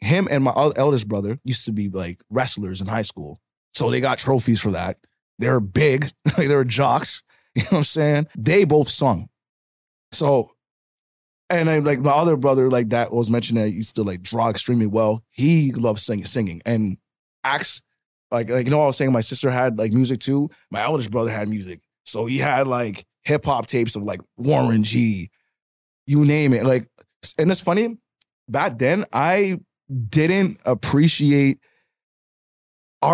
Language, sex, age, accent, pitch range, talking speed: English, male, 20-39, American, 115-150 Hz, 180 wpm